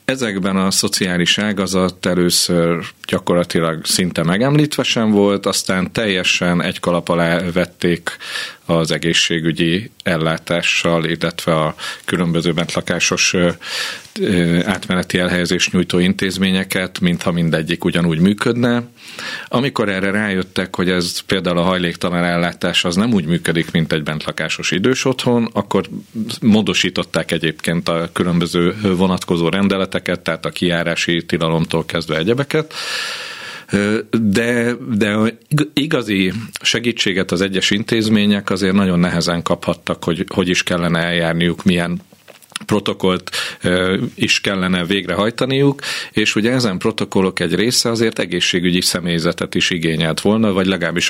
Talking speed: 115 wpm